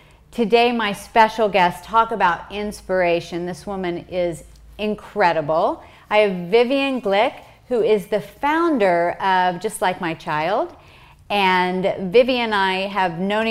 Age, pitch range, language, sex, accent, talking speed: 40-59, 175-220 Hz, English, female, American, 135 wpm